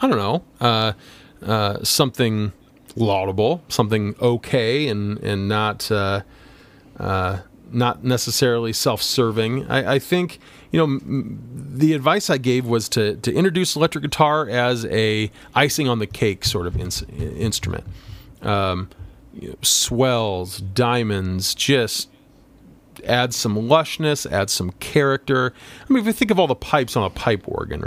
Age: 40-59